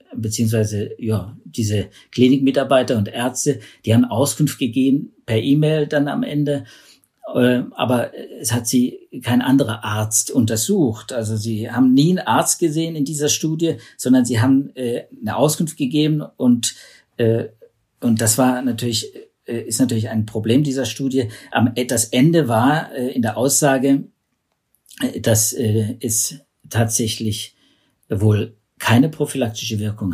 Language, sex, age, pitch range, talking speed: German, male, 50-69, 110-135 Hz, 125 wpm